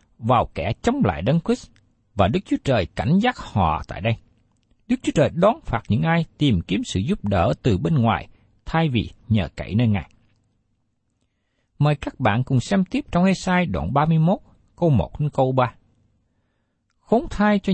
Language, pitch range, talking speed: Vietnamese, 100-160 Hz, 185 wpm